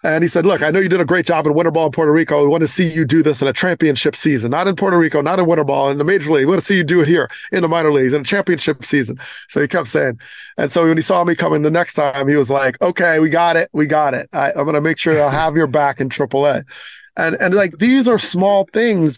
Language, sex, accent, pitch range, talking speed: English, male, American, 130-160 Hz, 315 wpm